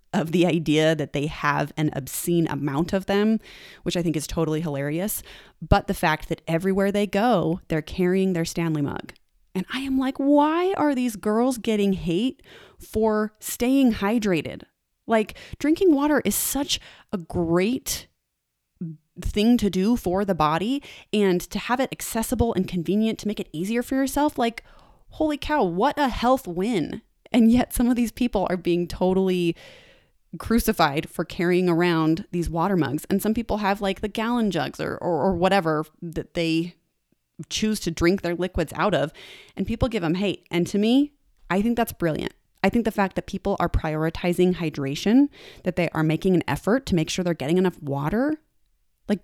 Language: English